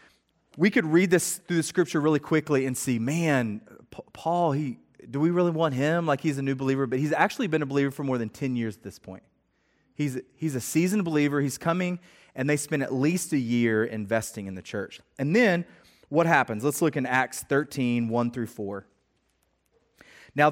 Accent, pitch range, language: American, 120-155 Hz, English